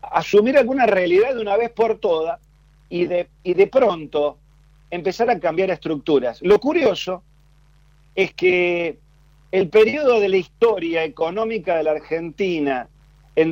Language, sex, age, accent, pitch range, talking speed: Spanish, male, 40-59, Argentinian, 150-210 Hz, 135 wpm